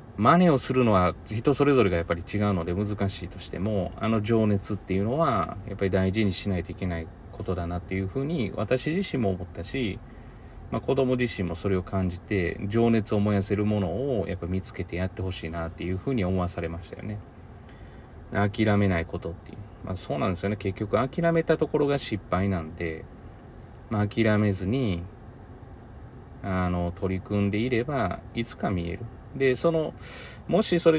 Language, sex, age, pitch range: Japanese, male, 30-49, 95-115 Hz